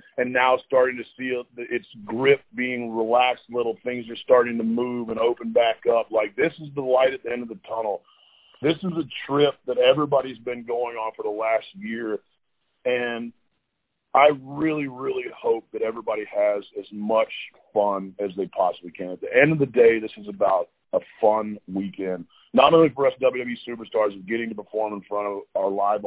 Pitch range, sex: 105-130 Hz, male